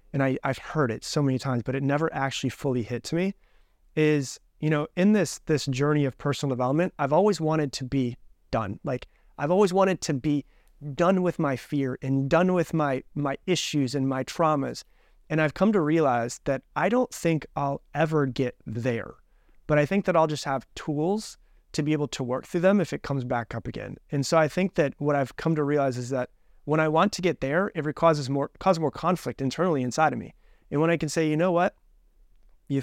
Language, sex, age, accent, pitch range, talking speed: English, male, 30-49, American, 130-160 Hz, 220 wpm